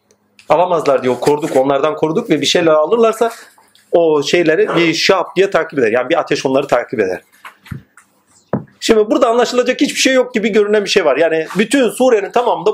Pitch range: 180-235 Hz